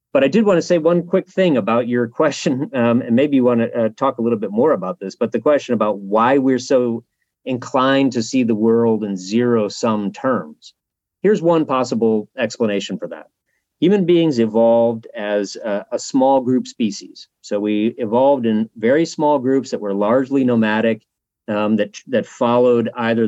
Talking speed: 180 wpm